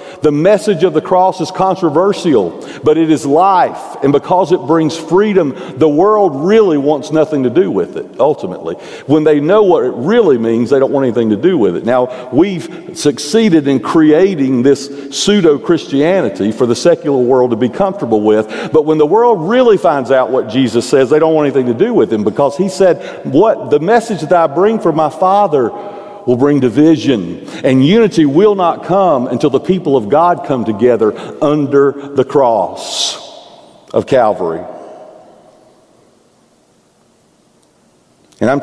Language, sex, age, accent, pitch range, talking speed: English, male, 50-69, American, 135-185 Hz, 170 wpm